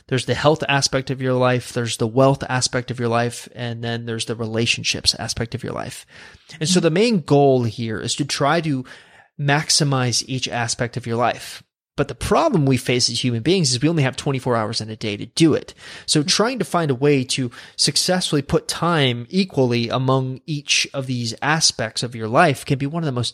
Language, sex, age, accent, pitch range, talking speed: English, male, 30-49, American, 120-150 Hz, 215 wpm